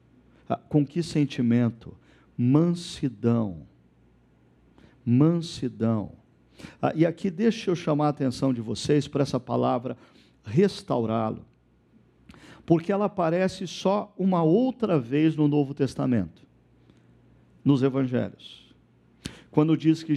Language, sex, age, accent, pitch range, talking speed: Portuguese, male, 50-69, Brazilian, 115-150 Hz, 100 wpm